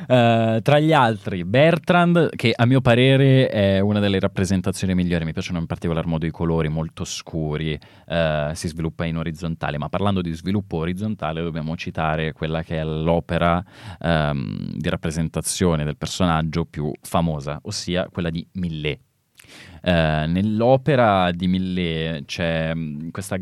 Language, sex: Italian, male